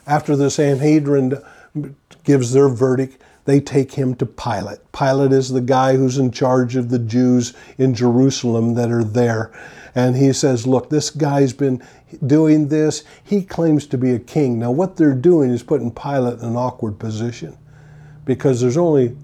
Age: 50-69